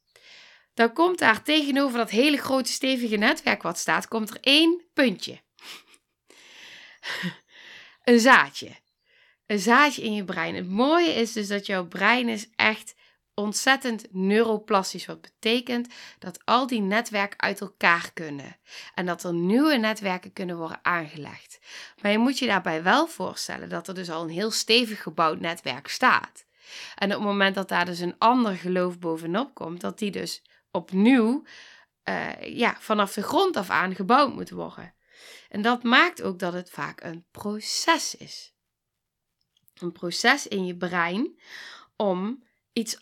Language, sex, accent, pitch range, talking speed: Dutch, female, Dutch, 180-245 Hz, 155 wpm